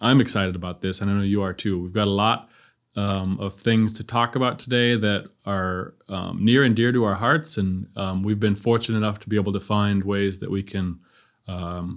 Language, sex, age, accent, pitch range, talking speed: English, male, 20-39, American, 100-125 Hz, 230 wpm